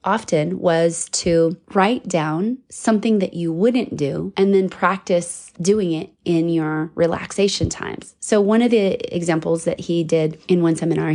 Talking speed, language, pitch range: 160 wpm, English, 165-195 Hz